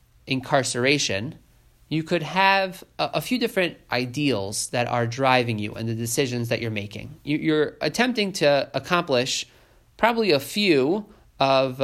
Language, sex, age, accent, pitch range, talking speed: English, male, 30-49, American, 120-150 Hz, 140 wpm